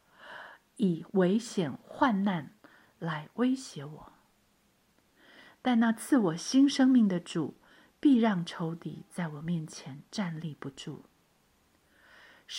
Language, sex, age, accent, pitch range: Chinese, female, 50-69, native, 155-205 Hz